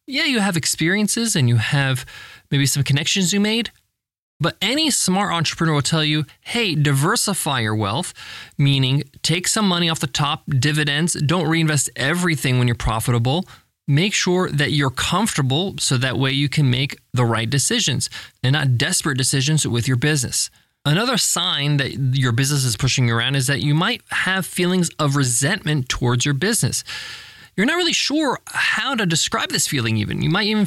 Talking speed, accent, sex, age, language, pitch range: 180 wpm, American, male, 20-39, English, 135-190 Hz